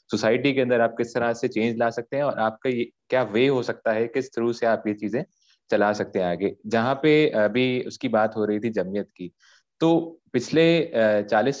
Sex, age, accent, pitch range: male, 20-39, Indian, 110-130 Hz